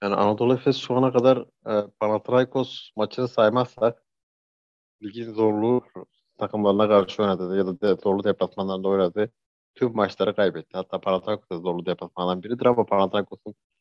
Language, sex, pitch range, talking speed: Turkish, male, 95-110 Hz, 130 wpm